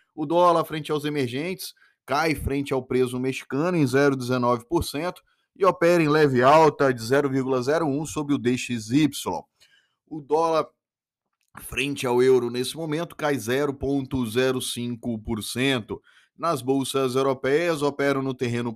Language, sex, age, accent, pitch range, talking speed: Portuguese, male, 20-39, Brazilian, 125-145 Hz, 120 wpm